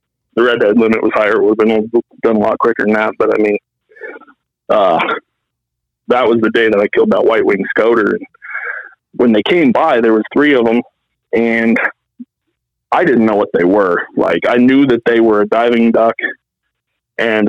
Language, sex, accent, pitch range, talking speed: English, male, American, 115-140 Hz, 190 wpm